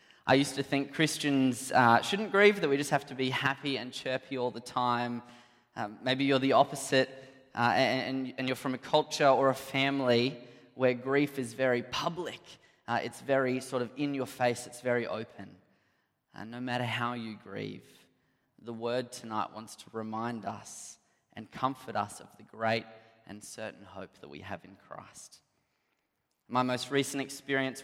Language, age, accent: English, 20-39, Australian